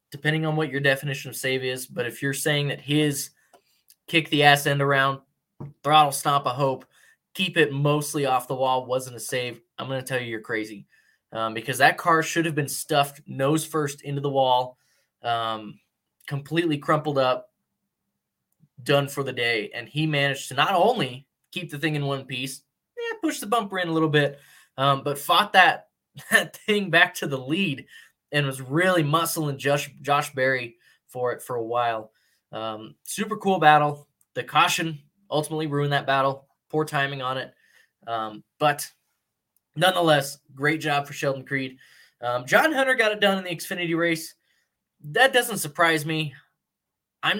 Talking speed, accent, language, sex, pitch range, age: 175 wpm, American, English, male, 130-160 Hz, 20-39